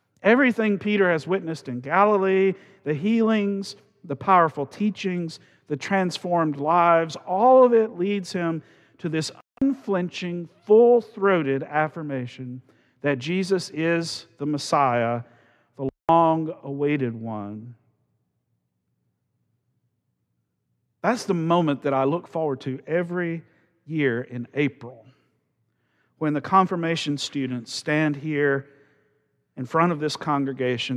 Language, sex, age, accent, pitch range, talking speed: English, male, 50-69, American, 135-175 Hz, 105 wpm